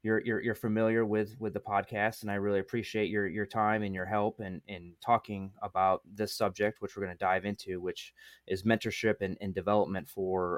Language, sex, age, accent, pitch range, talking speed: English, male, 20-39, American, 100-115 Hz, 215 wpm